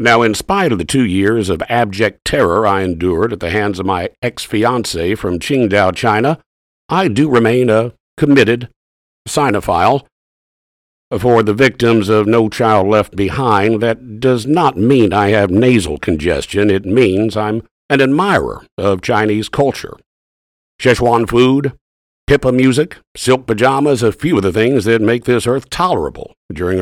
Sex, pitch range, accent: male, 100-125 Hz, American